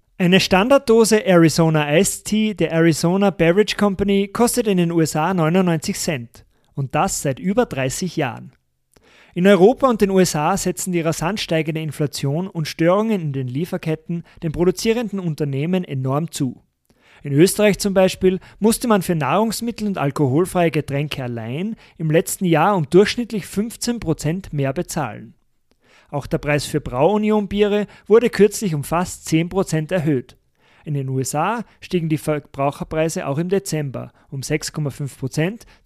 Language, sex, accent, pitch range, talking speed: German, male, German, 150-195 Hz, 140 wpm